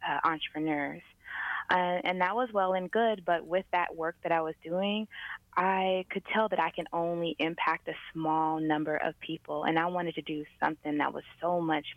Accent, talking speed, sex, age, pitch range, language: American, 200 wpm, female, 20-39, 155-180 Hz, English